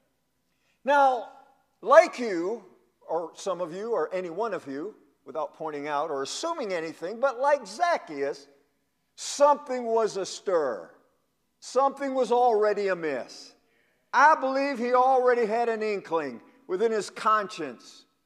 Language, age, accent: English, 50-69, American